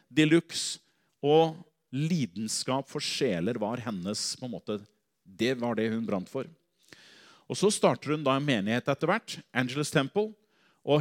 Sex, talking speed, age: male, 145 wpm, 40-59